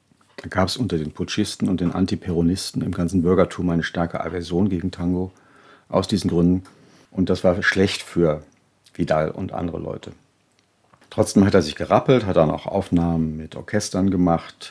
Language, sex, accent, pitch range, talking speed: German, male, German, 85-95 Hz, 165 wpm